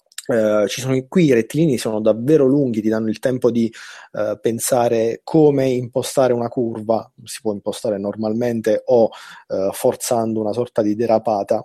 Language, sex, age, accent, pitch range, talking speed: Italian, male, 30-49, native, 120-155 Hz, 165 wpm